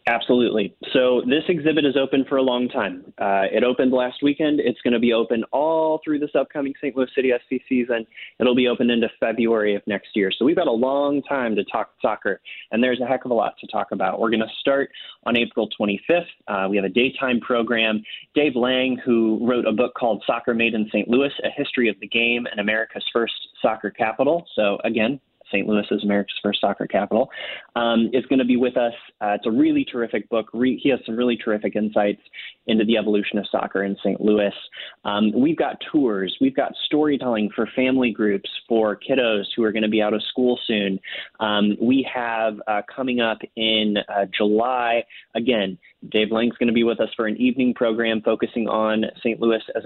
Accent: American